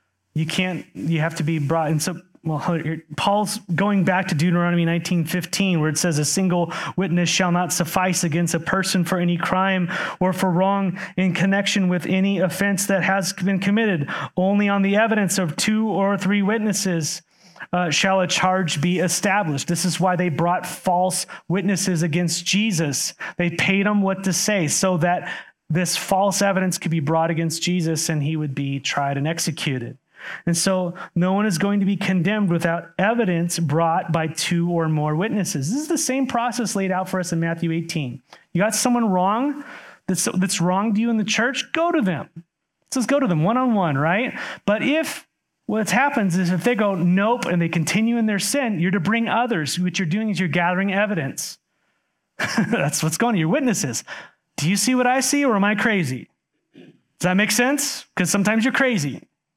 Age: 30-49